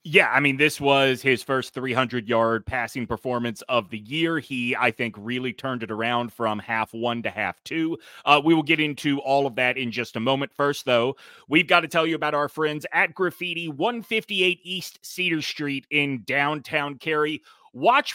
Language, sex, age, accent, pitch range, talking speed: English, male, 30-49, American, 130-175 Hz, 190 wpm